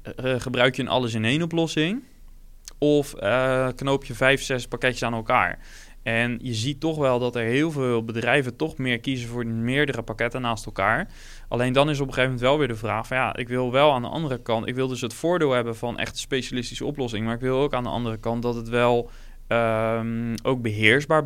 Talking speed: 215 wpm